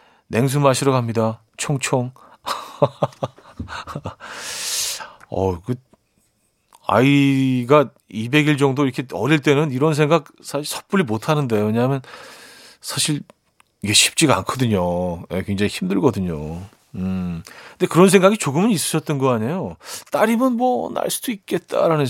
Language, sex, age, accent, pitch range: Korean, male, 40-59, native, 110-160 Hz